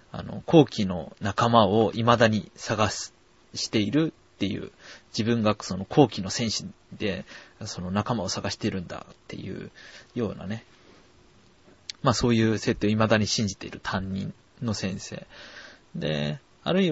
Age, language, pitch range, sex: 20-39, Japanese, 100-130 Hz, male